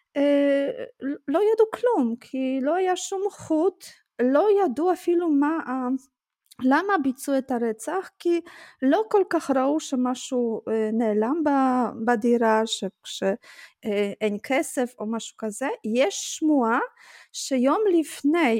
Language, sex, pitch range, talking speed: Hebrew, female, 225-315 Hz, 110 wpm